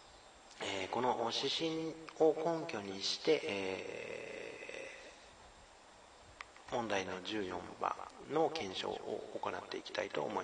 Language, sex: Japanese, male